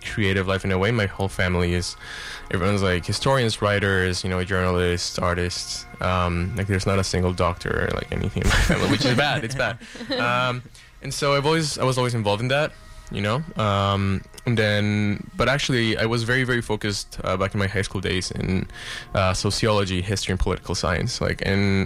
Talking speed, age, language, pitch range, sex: 205 wpm, 10-29, English, 95-115 Hz, male